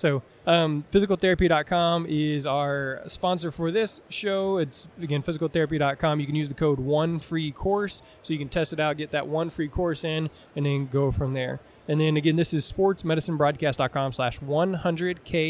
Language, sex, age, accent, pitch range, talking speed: English, male, 20-39, American, 140-165 Hz, 175 wpm